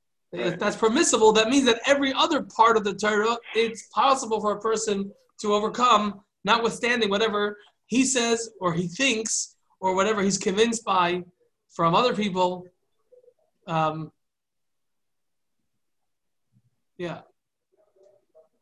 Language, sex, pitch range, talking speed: English, male, 175-225 Hz, 115 wpm